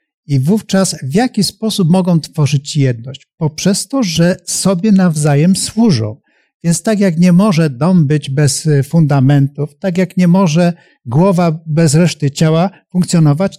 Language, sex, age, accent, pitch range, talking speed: Polish, male, 50-69, native, 145-185 Hz, 140 wpm